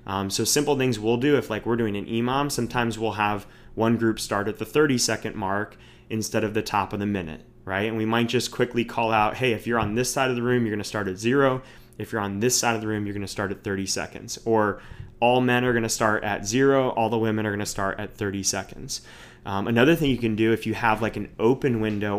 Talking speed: 270 wpm